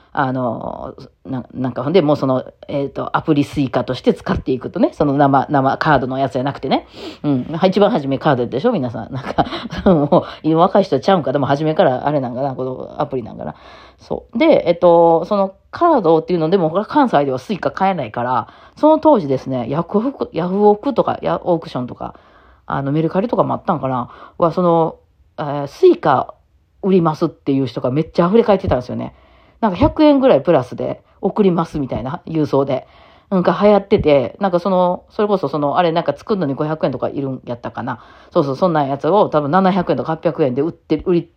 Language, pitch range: Japanese, 135-195 Hz